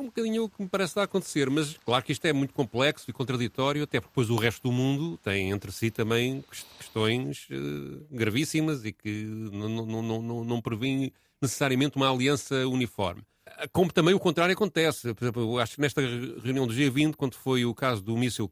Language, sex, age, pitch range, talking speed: Portuguese, male, 40-59, 115-160 Hz, 205 wpm